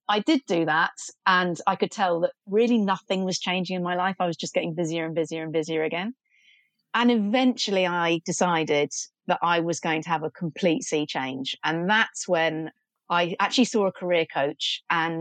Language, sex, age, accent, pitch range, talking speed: English, female, 30-49, British, 170-220 Hz, 195 wpm